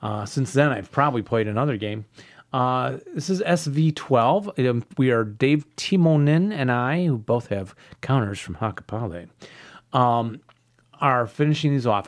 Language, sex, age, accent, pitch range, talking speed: English, male, 30-49, American, 115-150 Hz, 155 wpm